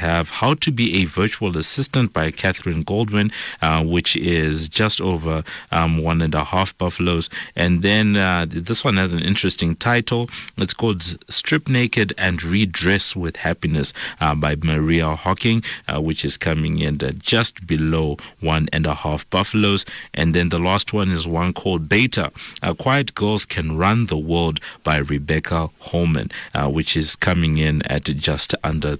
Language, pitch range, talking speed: English, 80-105 Hz, 170 wpm